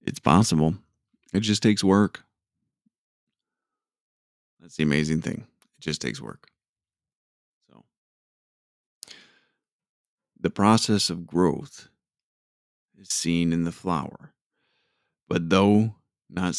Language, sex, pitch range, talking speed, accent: English, male, 75-95 Hz, 100 wpm, American